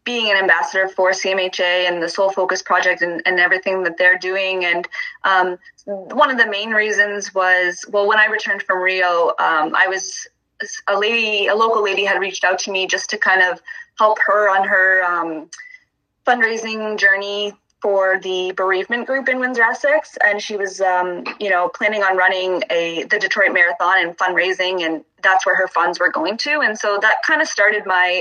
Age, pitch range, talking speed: 20-39, 185-215 Hz, 195 wpm